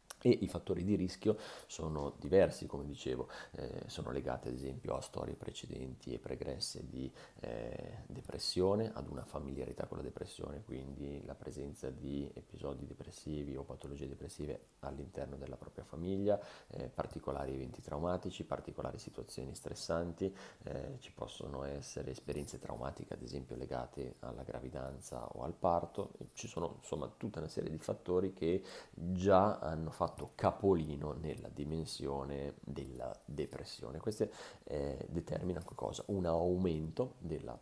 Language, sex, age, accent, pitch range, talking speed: Italian, male, 30-49, native, 70-90 Hz, 135 wpm